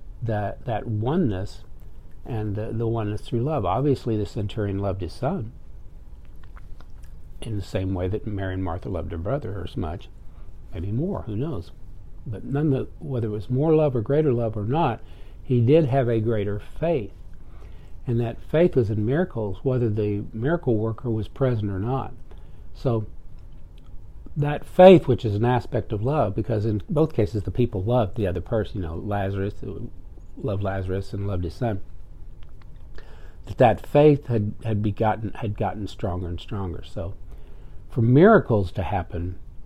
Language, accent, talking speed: English, American, 165 wpm